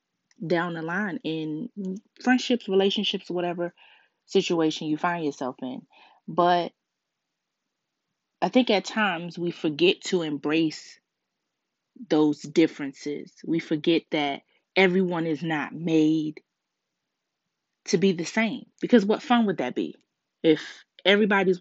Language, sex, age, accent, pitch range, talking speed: English, female, 20-39, American, 160-220 Hz, 115 wpm